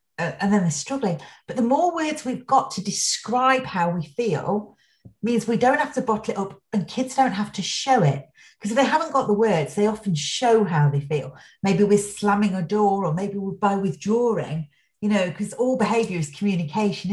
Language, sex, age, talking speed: English, female, 40-59, 210 wpm